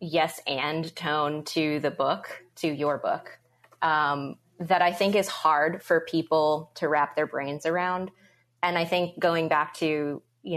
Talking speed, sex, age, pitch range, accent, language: 165 wpm, female, 20-39, 150-195 Hz, American, English